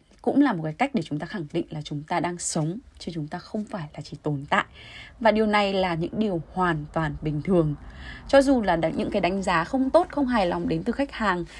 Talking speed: 260 wpm